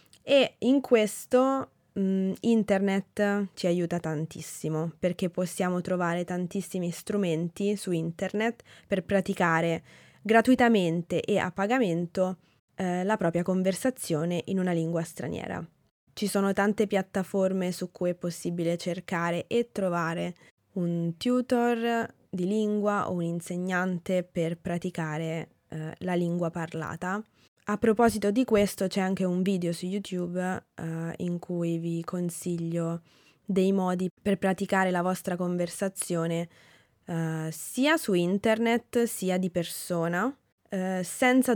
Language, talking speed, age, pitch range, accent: Italian, 115 wpm, 20-39, 170-200 Hz, native